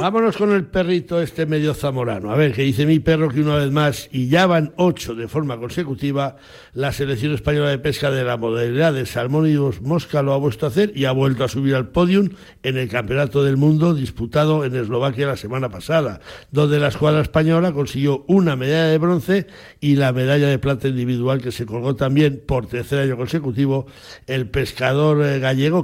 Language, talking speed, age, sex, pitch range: Spanish, 195 wpm, 60-79, male, 125-150 Hz